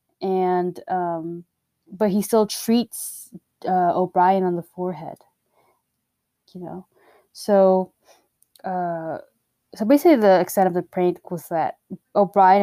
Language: English